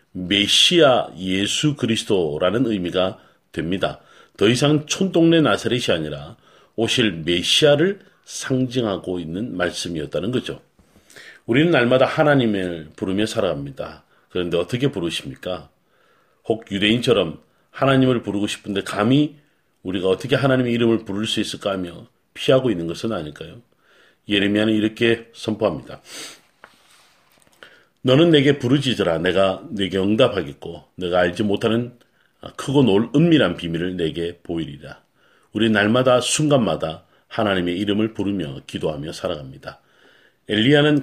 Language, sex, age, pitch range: Korean, male, 40-59, 90-130 Hz